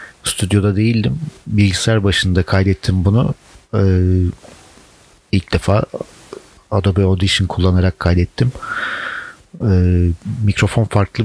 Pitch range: 90-110 Hz